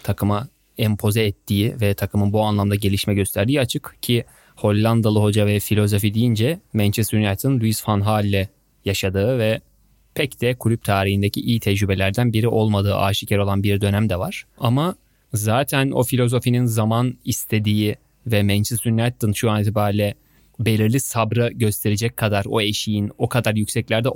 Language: Turkish